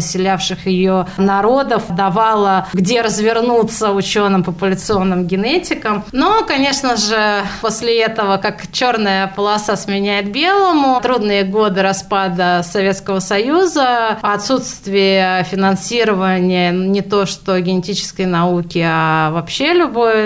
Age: 20-39